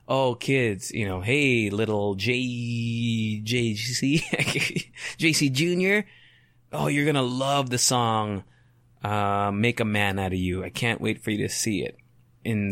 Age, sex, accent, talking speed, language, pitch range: 20-39, male, American, 190 wpm, English, 115-145 Hz